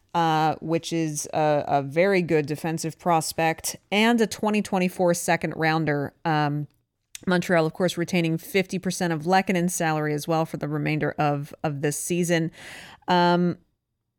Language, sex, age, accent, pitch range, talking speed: English, female, 30-49, American, 155-195 Hz, 140 wpm